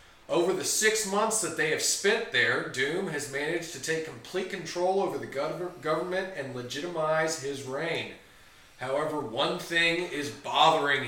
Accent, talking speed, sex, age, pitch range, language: American, 150 wpm, male, 30-49, 115-160 Hz, English